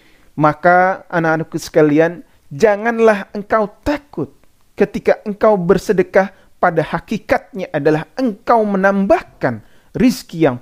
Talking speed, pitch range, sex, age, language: 90 wpm, 140-215 Hz, male, 30-49, Indonesian